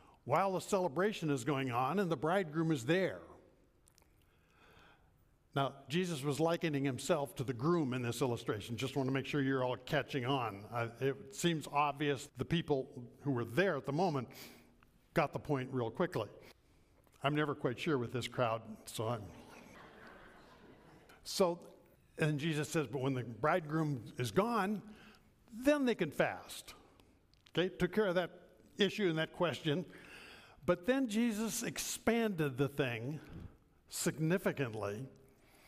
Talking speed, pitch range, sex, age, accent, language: 145 wpm, 140-185 Hz, male, 60-79, American, English